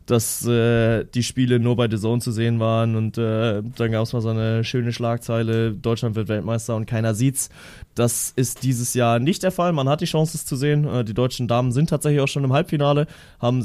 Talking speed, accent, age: 230 wpm, German, 20-39